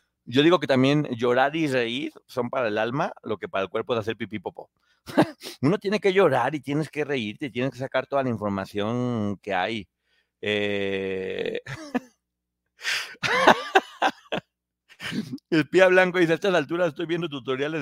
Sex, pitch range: male, 115-155 Hz